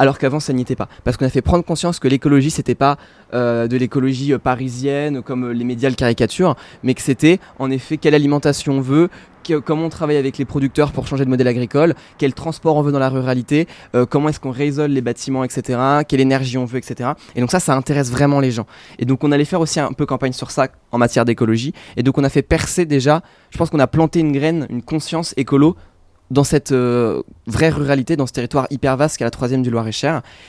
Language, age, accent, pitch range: French, 20-39, French, 125-155 Hz